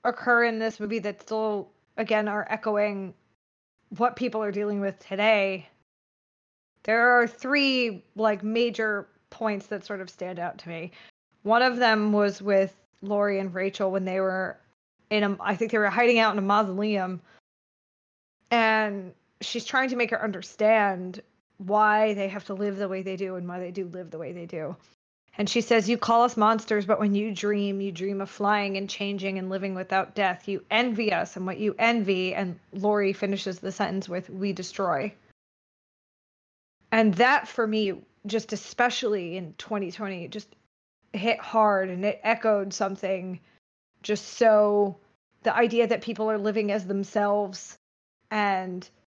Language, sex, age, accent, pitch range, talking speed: English, female, 20-39, American, 195-220 Hz, 165 wpm